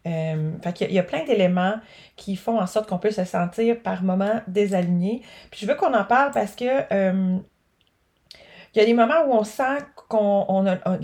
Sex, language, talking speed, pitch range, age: female, French, 225 wpm, 190-230 Hz, 30-49